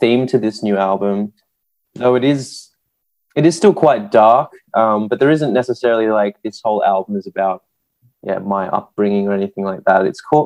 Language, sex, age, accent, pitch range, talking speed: German, male, 20-39, Australian, 100-125 Hz, 190 wpm